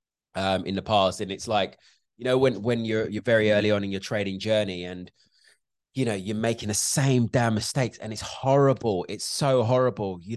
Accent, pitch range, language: British, 95-120 Hz, English